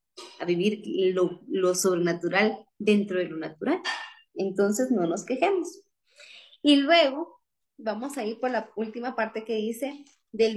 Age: 30-49